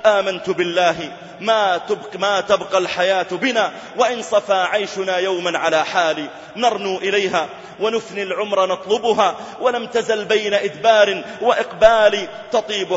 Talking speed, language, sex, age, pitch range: 115 wpm, Arabic, male, 30-49, 175-210 Hz